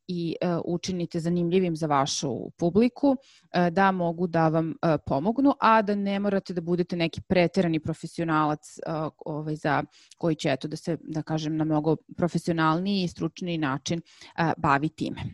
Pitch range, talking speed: 165-195 Hz, 165 wpm